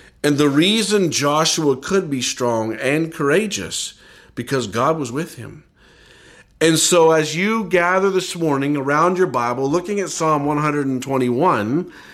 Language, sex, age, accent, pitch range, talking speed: English, male, 50-69, American, 130-175 Hz, 140 wpm